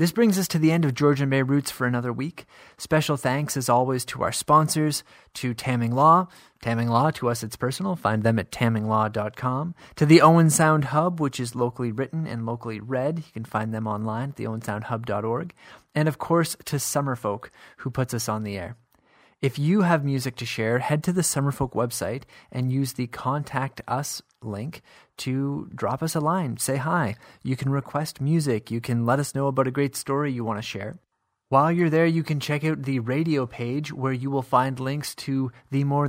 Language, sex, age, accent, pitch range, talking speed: English, male, 30-49, American, 120-150 Hz, 205 wpm